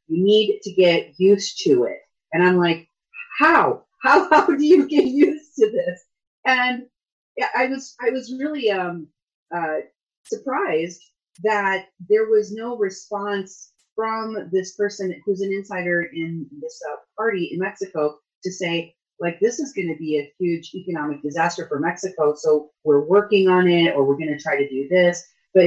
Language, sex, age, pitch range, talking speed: English, female, 40-59, 165-250 Hz, 170 wpm